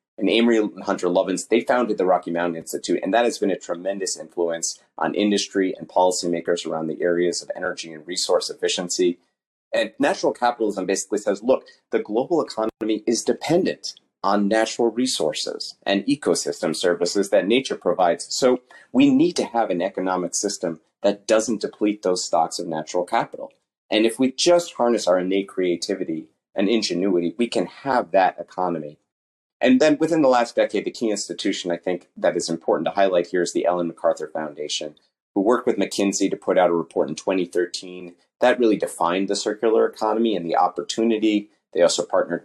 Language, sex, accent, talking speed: English, male, American, 175 wpm